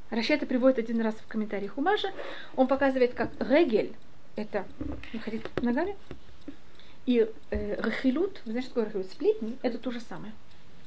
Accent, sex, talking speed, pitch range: native, female, 135 wpm, 235-290 Hz